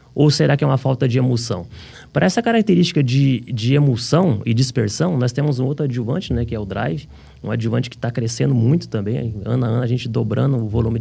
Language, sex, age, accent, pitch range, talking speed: Portuguese, male, 30-49, Brazilian, 120-155 Hz, 225 wpm